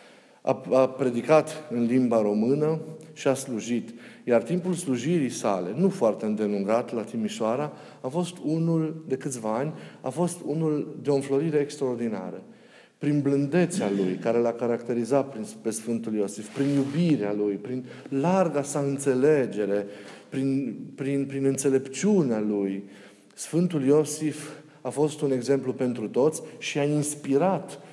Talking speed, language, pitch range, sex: 135 wpm, Romanian, 115-145 Hz, male